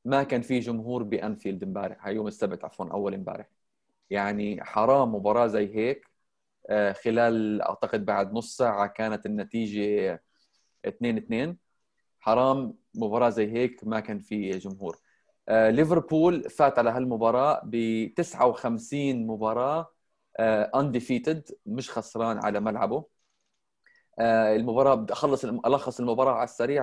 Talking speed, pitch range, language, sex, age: 120 wpm, 110-130 Hz, Arabic, male, 20-39